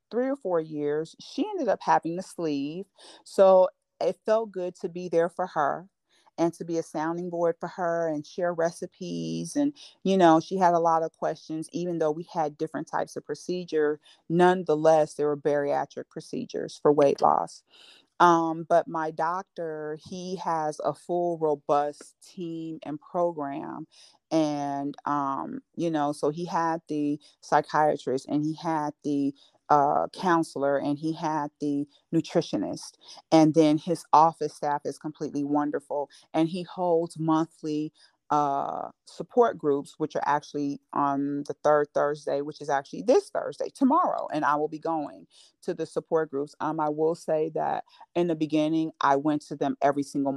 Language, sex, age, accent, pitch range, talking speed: English, female, 40-59, American, 150-175 Hz, 165 wpm